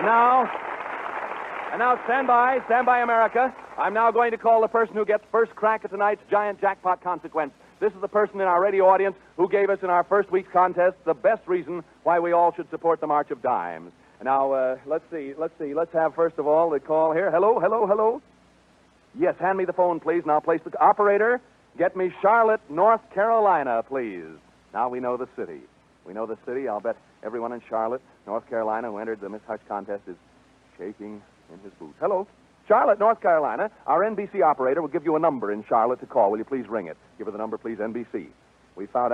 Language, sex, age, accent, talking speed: English, male, 50-69, American, 215 wpm